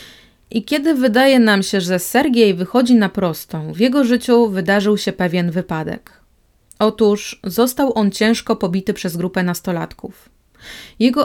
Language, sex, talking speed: Polish, female, 140 wpm